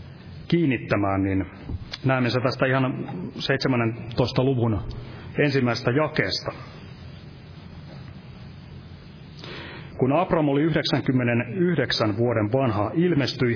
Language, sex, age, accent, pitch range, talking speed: Finnish, male, 30-49, native, 105-145 Hz, 75 wpm